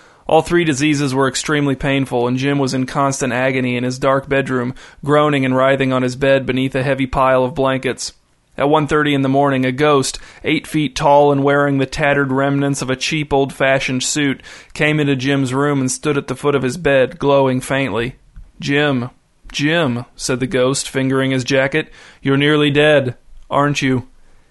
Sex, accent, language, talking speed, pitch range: male, American, English, 185 wpm, 130-150 Hz